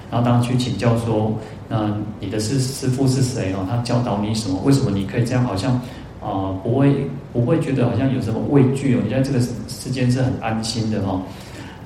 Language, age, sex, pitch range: Chinese, 30-49, male, 105-125 Hz